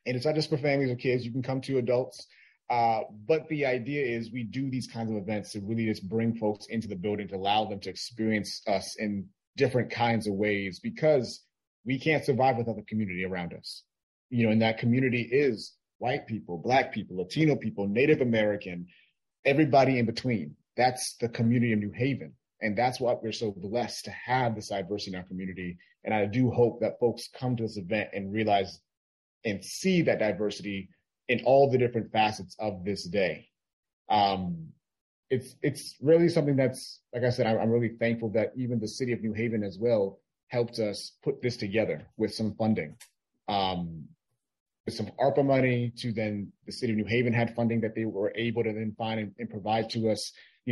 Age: 30-49